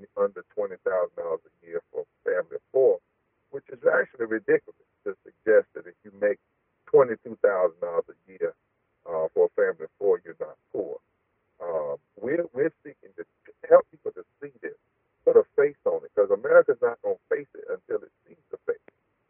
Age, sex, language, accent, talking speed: 50-69, male, English, American, 180 wpm